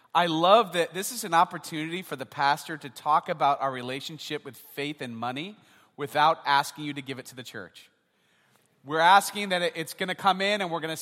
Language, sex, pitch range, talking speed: English, male, 150-210 Hz, 220 wpm